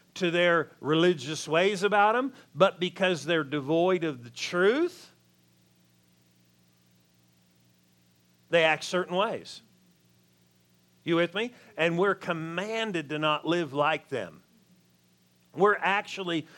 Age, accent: 50-69, American